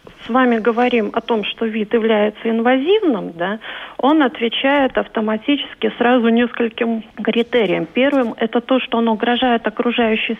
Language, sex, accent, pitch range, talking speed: Russian, female, native, 220-260 Hz, 140 wpm